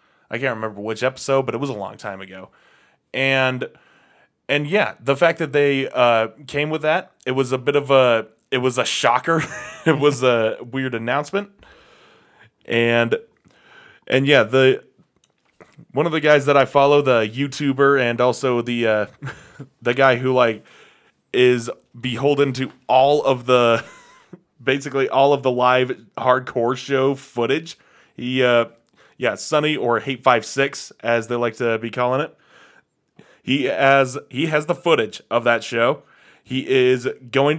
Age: 20-39